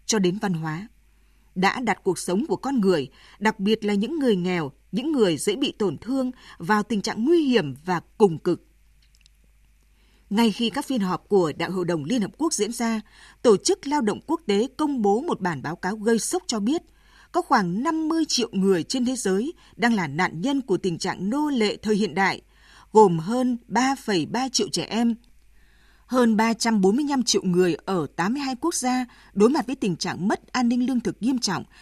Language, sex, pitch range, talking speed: Vietnamese, female, 185-250 Hz, 200 wpm